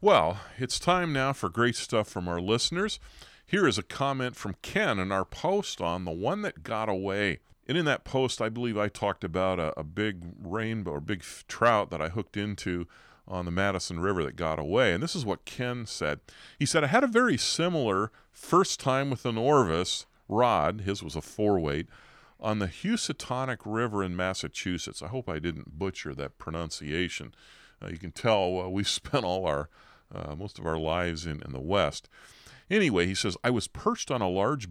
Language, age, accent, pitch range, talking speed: English, 40-59, American, 90-125 Hz, 200 wpm